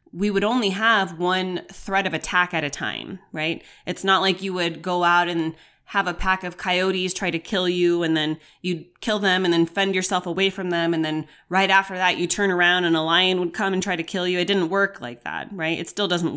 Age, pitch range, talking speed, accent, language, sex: 20-39, 160-185 Hz, 250 wpm, American, English, female